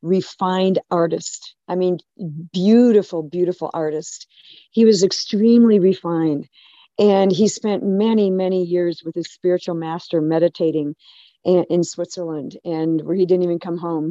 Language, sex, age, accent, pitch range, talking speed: English, female, 50-69, American, 165-205 Hz, 130 wpm